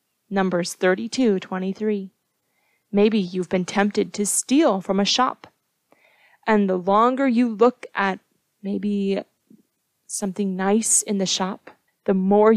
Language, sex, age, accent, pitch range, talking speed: English, female, 30-49, American, 200-275 Hz, 125 wpm